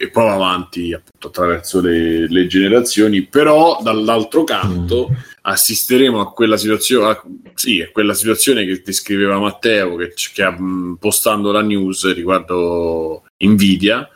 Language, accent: Italian, native